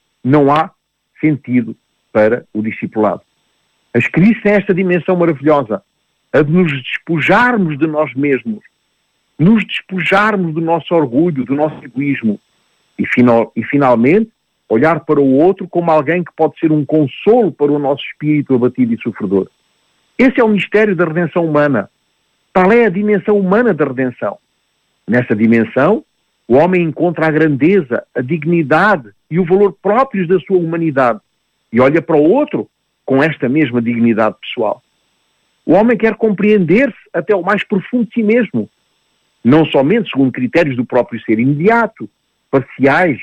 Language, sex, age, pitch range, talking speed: Portuguese, male, 50-69, 135-200 Hz, 150 wpm